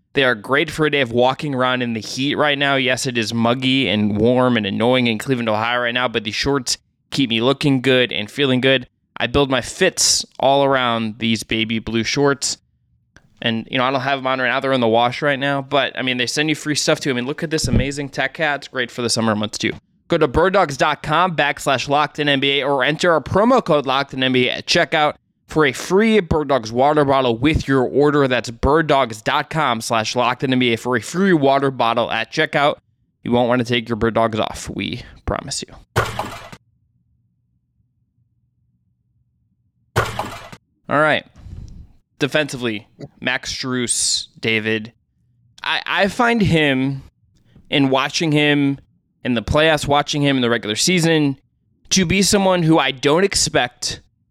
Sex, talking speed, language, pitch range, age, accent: male, 185 wpm, English, 120-145 Hz, 20-39, American